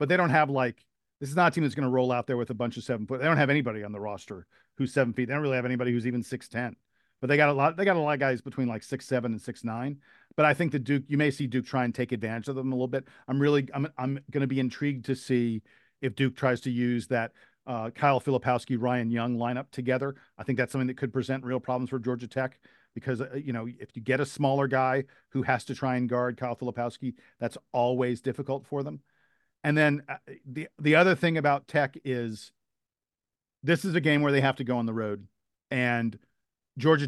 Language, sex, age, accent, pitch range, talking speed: English, male, 40-59, American, 120-140 Hz, 250 wpm